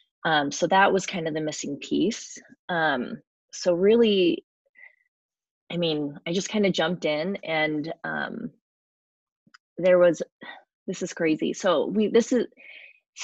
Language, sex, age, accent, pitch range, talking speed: English, female, 20-39, American, 160-215 Hz, 140 wpm